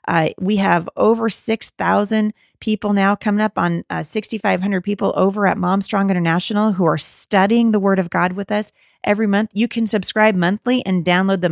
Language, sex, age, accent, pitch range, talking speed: English, female, 30-49, American, 170-210 Hz, 180 wpm